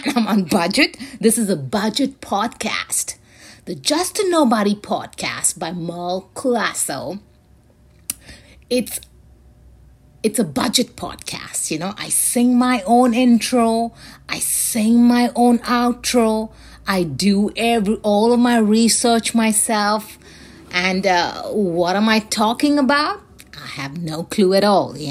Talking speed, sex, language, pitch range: 130 wpm, female, English, 165-235 Hz